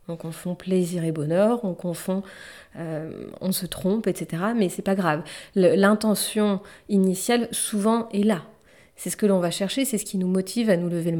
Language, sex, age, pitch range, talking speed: French, female, 30-49, 180-225 Hz, 195 wpm